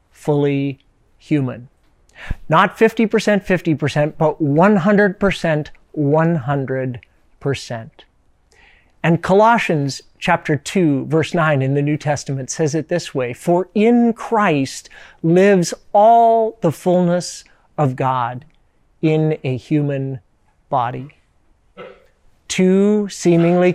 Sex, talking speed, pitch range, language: male, 95 wpm, 140-175 Hz, English